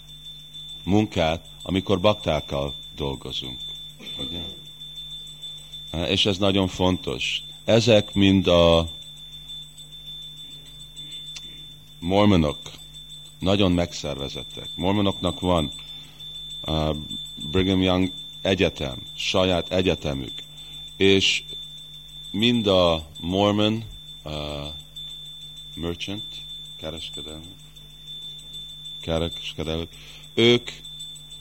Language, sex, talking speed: Hungarian, male, 55 wpm